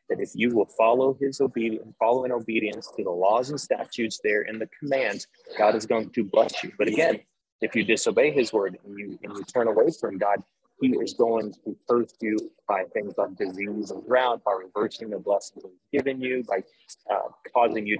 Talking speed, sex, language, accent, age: 205 wpm, male, English, American, 30-49